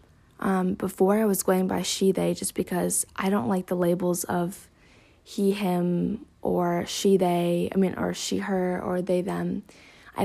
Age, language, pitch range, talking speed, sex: 20-39, English, 180-200 Hz, 175 wpm, female